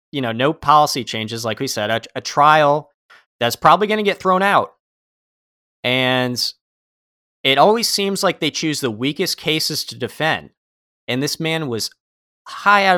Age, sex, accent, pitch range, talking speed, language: 30-49, male, American, 110-155 Hz, 165 wpm, English